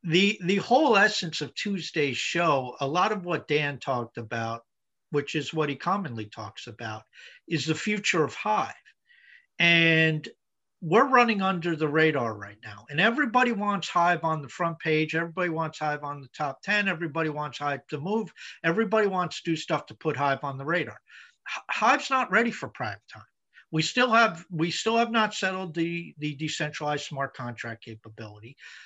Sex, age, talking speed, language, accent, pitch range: male, 50-69, 180 wpm, English, American, 140-180 Hz